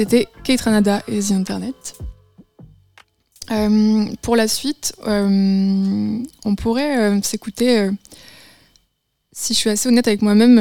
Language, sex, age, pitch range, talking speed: French, female, 20-39, 190-220 Hz, 130 wpm